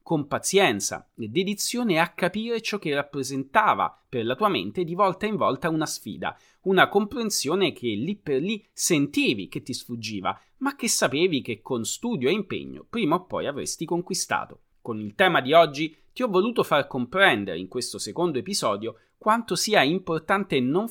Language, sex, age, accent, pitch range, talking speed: Italian, male, 30-49, native, 145-215 Hz, 170 wpm